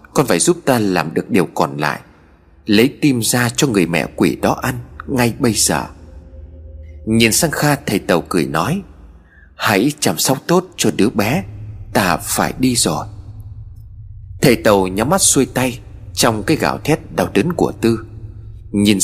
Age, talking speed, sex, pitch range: 30-49, 170 wpm, male, 100-130 Hz